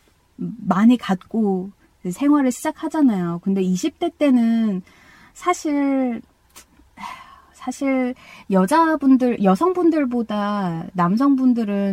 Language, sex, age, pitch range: Korean, female, 20-39, 185-270 Hz